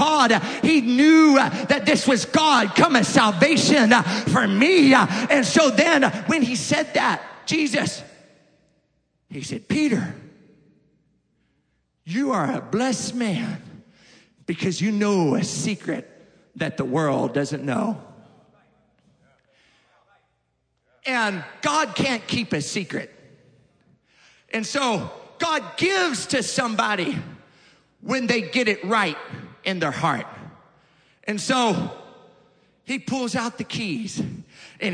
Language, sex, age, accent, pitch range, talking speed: English, male, 40-59, American, 205-260 Hz, 115 wpm